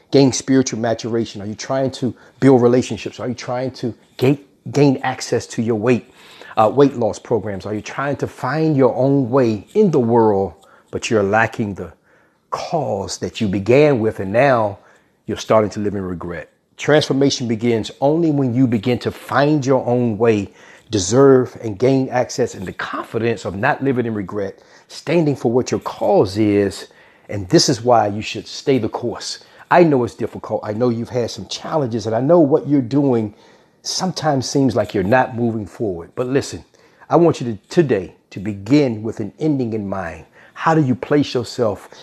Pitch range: 110-140 Hz